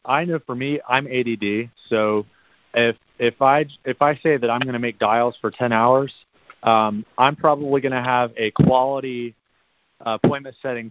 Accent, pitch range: American, 110-130 Hz